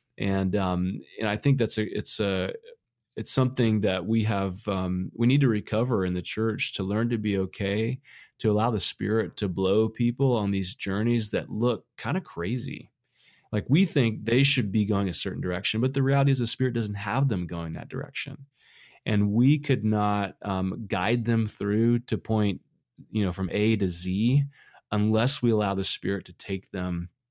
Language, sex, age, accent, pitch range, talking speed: English, male, 30-49, American, 95-120 Hz, 195 wpm